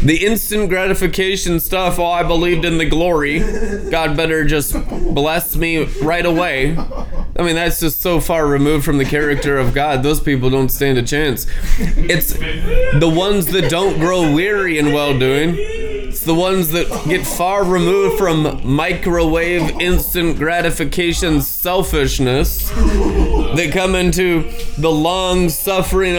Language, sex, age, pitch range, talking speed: English, male, 20-39, 155-185 Hz, 140 wpm